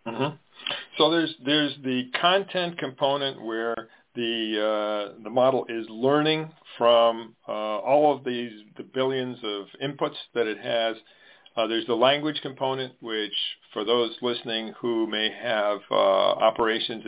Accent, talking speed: American, 140 wpm